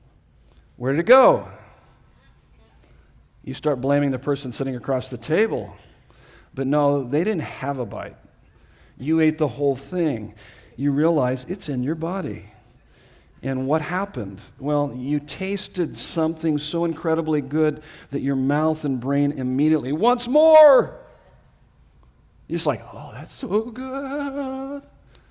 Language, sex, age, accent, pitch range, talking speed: English, male, 50-69, American, 120-150 Hz, 135 wpm